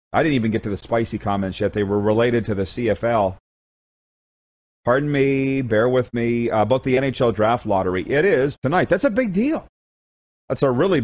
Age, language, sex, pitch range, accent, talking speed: 40-59, English, male, 115-140 Hz, American, 195 wpm